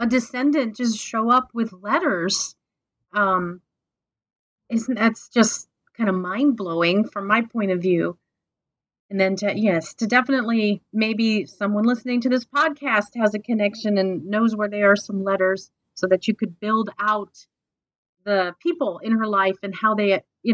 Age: 30-49